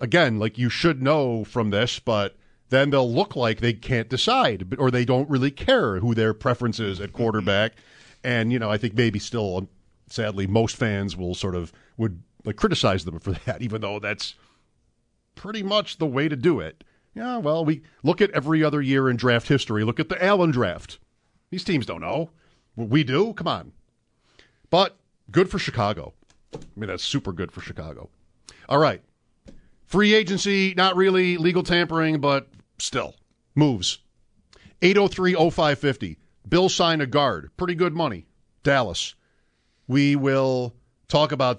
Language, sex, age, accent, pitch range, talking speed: English, male, 50-69, American, 115-160 Hz, 165 wpm